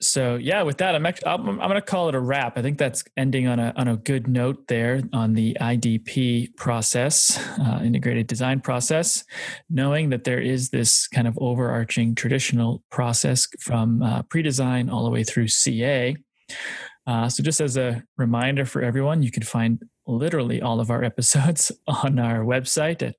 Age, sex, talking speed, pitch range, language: 30-49, male, 185 wpm, 120-140 Hz, English